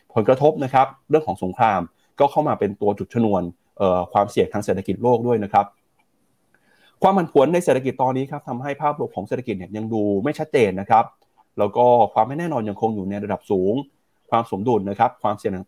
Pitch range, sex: 100-130 Hz, male